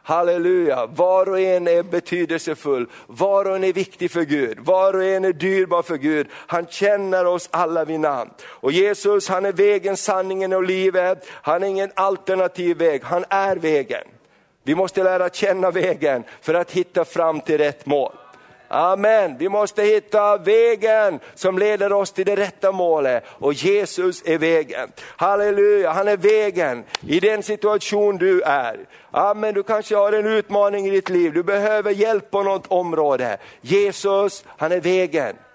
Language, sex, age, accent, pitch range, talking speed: Swedish, male, 50-69, native, 170-210 Hz, 165 wpm